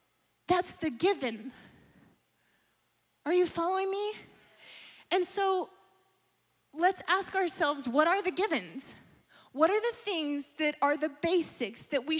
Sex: female